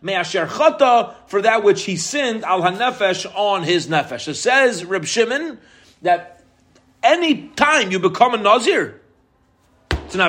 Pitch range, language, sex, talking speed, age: 140-195 Hz, English, male, 150 wpm, 40-59